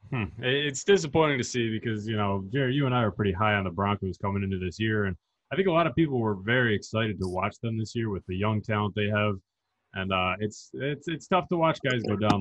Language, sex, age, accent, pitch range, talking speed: English, male, 30-49, American, 105-135 Hz, 260 wpm